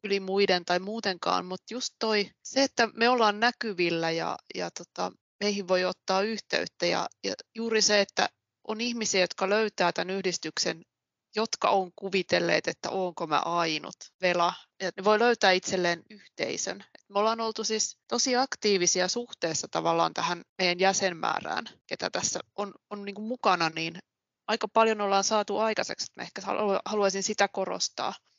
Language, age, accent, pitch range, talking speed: Finnish, 20-39, native, 185-215 Hz, 155 wpm